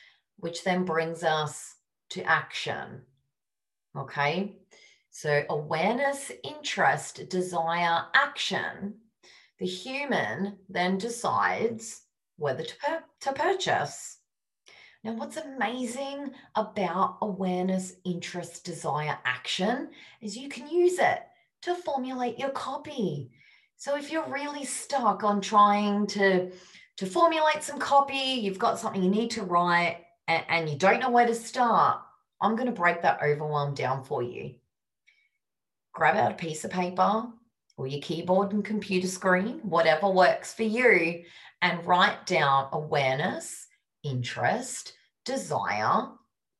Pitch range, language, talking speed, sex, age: 175-255 Hz, English, 120 wpm, female, 30-49